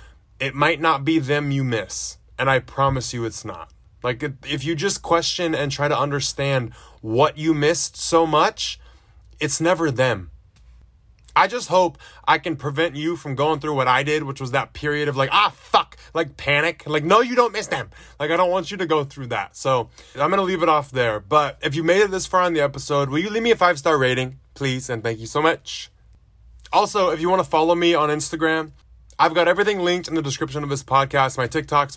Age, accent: 20-39, American